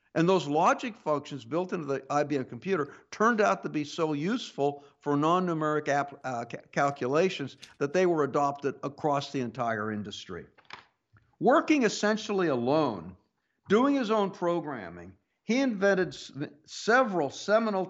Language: English